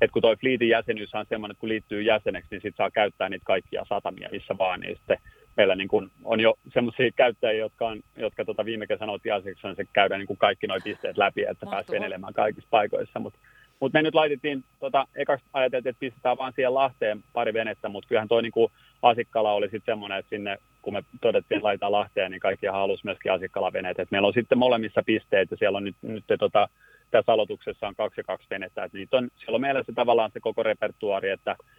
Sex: male